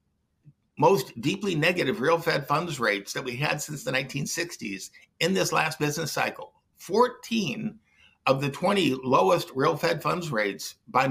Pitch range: 135-195 Hz